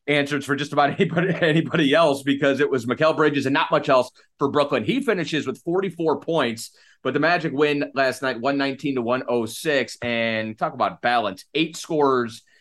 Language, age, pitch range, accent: English, 30-49, 120-155 Hz, American